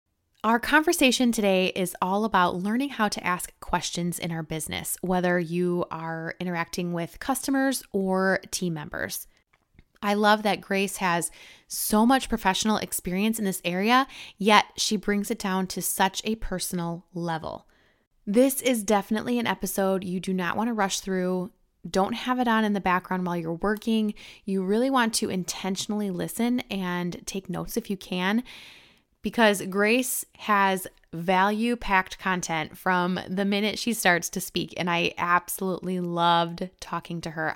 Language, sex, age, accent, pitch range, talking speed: English, female, 20-39, American, 180-225 Hz, 155 wpm